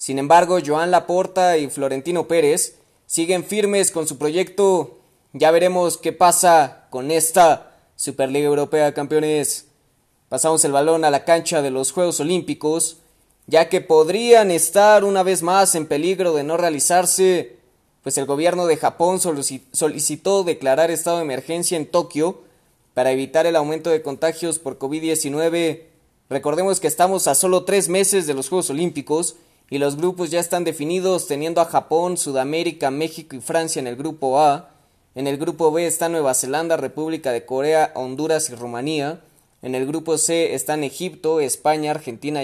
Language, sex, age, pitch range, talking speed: Spanish, male, 20-39, 145-175 Hz, 160 wpm